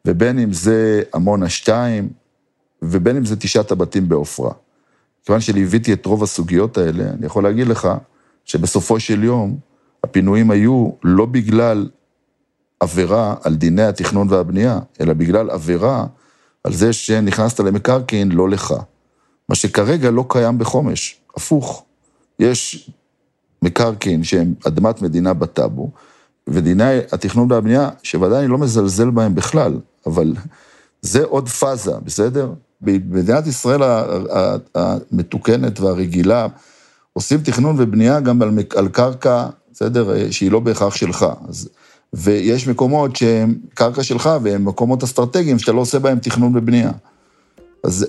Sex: male